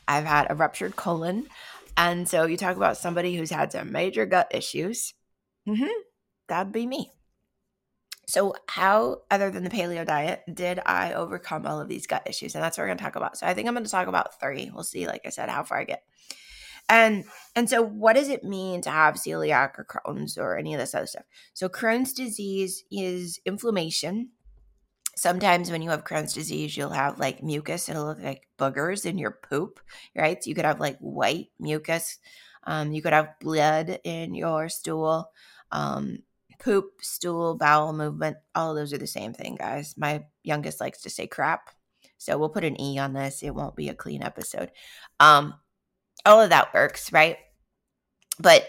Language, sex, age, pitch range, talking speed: English, female, 20-39, 155-200 Hz, 190 wpm